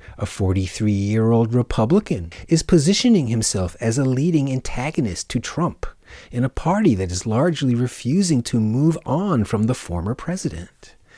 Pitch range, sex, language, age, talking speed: 100-140 Hz, male, English, 40-59, 140 wpm